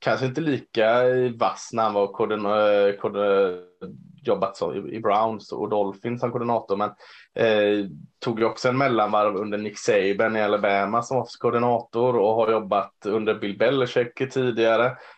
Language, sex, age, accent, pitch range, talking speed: Swedish, male, 20-39, Norwegian, 105-130 Hz, 145 wpm